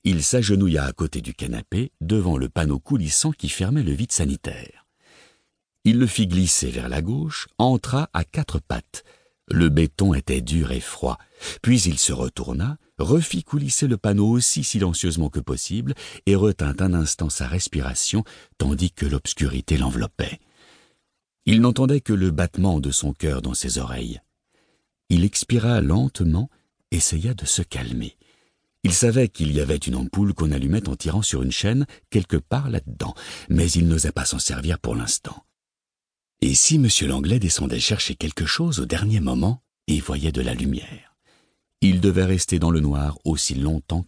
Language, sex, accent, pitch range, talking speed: French, male, French, 70-105 Hz, 165 wpm